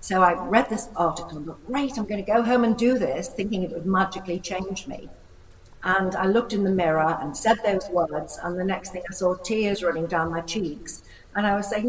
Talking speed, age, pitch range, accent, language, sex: 235 wpm, 60-79, 175-230 Hz, British, English, female